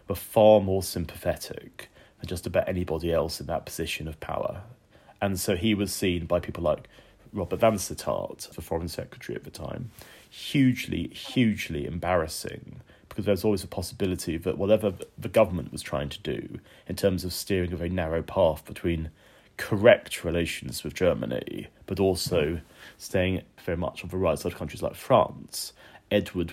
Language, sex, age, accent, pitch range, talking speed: English, male, 30-49, British, 90-105 Hz, 170 wpm